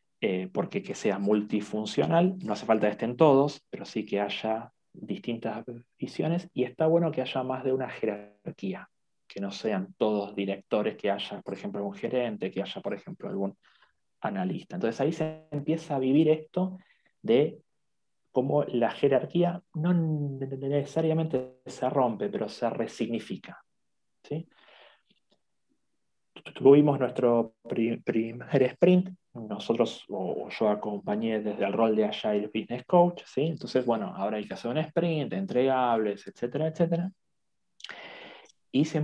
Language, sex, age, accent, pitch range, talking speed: English, male, 30-49, Argentinian, 115-160 Hz, 140 wpm